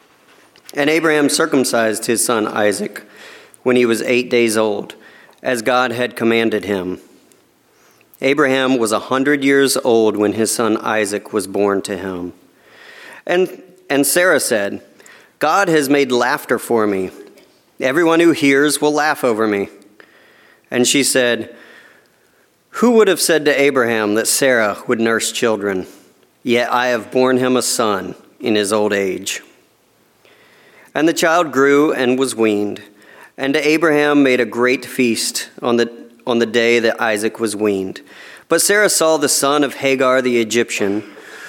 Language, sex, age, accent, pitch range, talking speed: English, male, 40-59, American, 110-145 Hz, 150 wpm